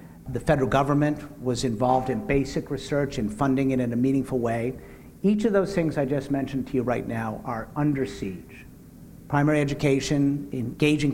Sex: male